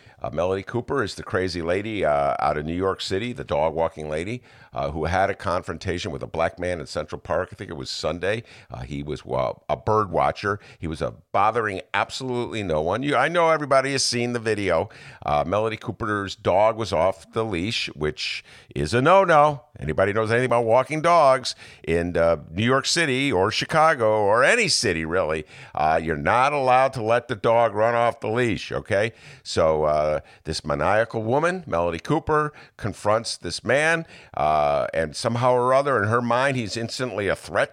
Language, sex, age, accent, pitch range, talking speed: English, male, 50-69, American, 105-145 Hz, 190 wpm